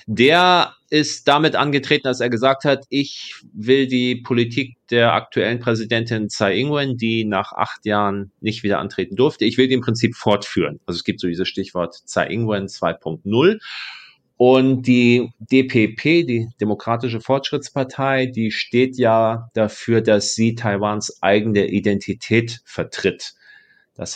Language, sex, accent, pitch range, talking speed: German, male, German, 105-130 Hz, 140 wpm